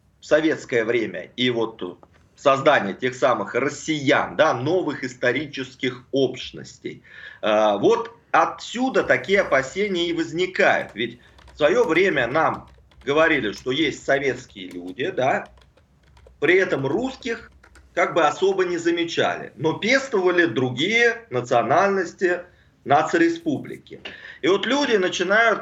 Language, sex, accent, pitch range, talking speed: Russian, male, native, 130-210 Hz, 110 wpm